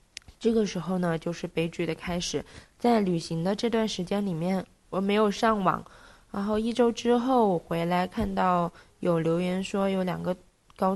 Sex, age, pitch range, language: female, 20-39, 175-220 Hz, Chinese